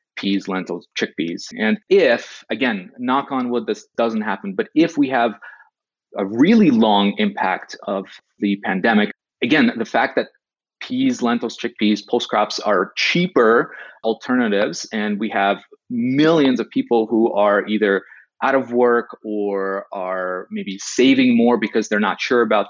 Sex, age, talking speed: male, 30-49, 150 wpm